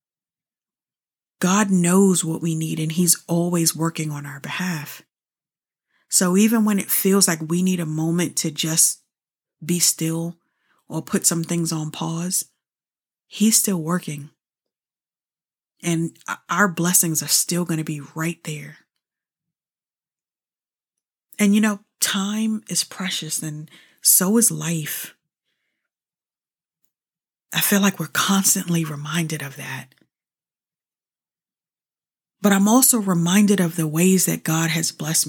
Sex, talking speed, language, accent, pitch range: female, 125 wpm, English, American, 160-185 Hz